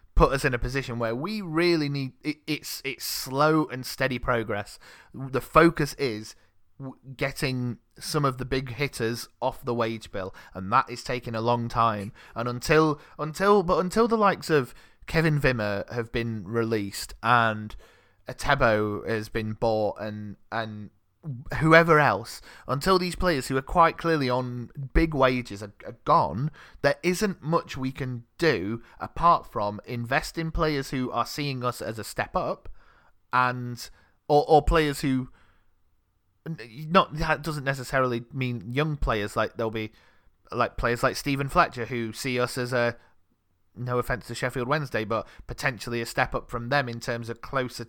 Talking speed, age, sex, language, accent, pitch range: 165 wpm, 20-39, male, English, British, 115-145 Hz